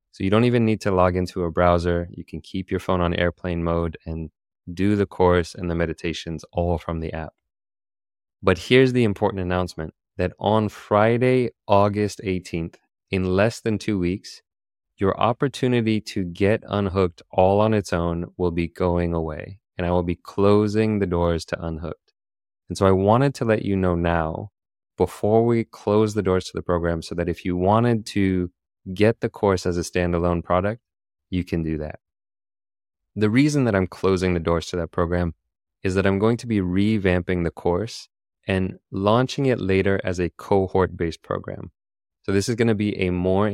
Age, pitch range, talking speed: 20-39, 85-105 Hz, 185 wpm